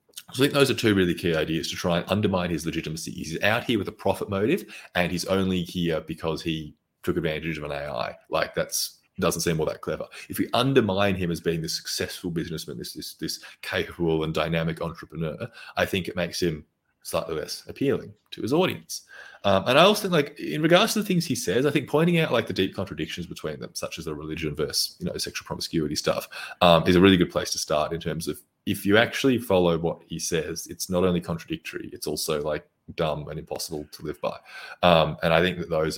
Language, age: English, 30-49